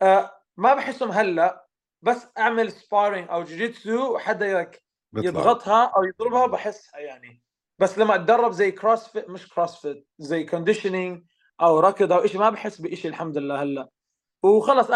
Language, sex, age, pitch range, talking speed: Arabic, male, 20-39, 175-225 Hz, 145 wpm